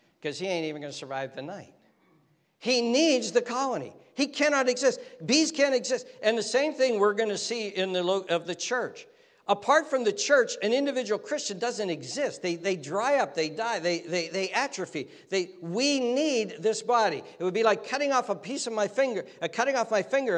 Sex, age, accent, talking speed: male, 60-79, American, 205 wpm